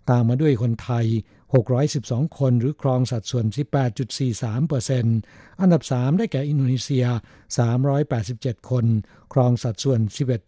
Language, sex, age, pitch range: Thai, male, 60-79, 120-140 Hz